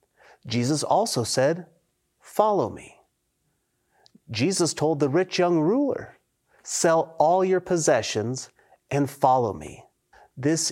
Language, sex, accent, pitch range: English, male, American, 125-170 Hz